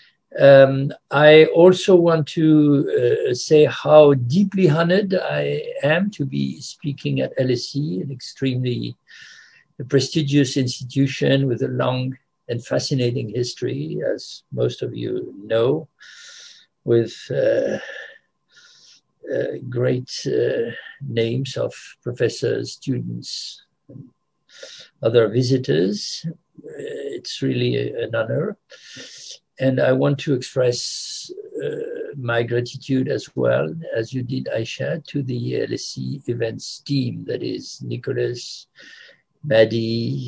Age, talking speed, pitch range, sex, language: 60-79, 105 wpm, 125-190 Hz, male, English